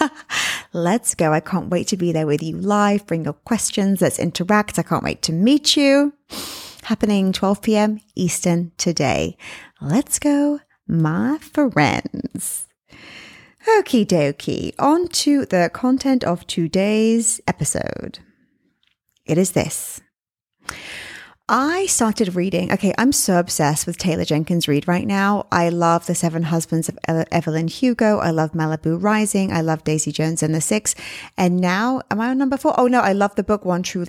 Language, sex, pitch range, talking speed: English, female, 170-230 Hz, 160 wpm